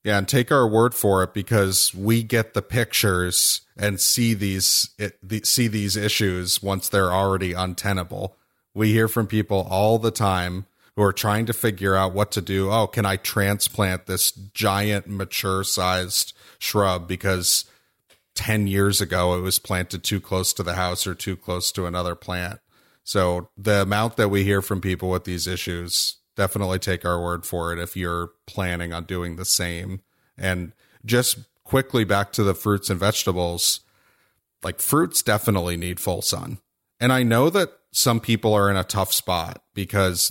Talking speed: 175 wpm